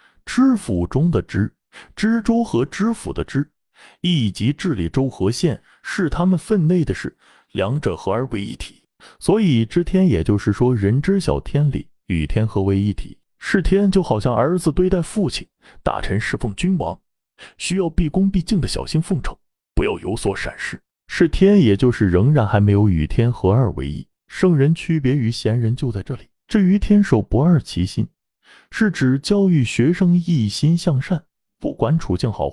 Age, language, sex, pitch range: 30-49, Chinese, male, 115-185 Hz